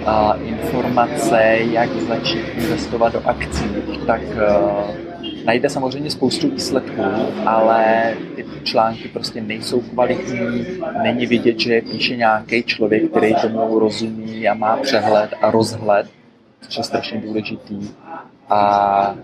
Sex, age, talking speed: male, 20-39, 120 wpm